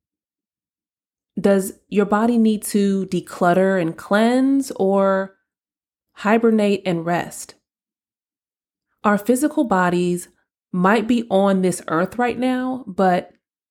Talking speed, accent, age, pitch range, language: 100 wpm, American, 30-49, 180-215 Hz, English